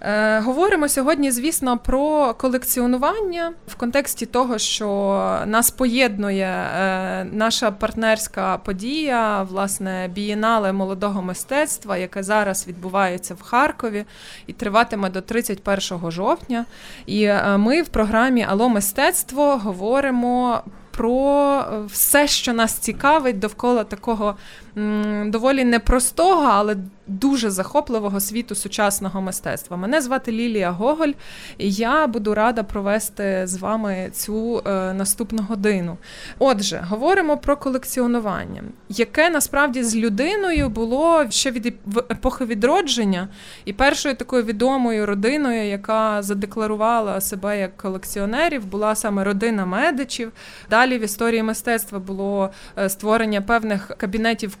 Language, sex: Ukrainian, female